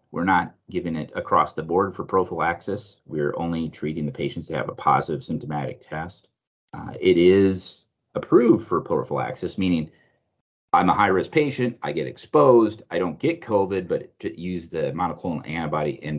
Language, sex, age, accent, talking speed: English, male, 30-49, American, 165 wpm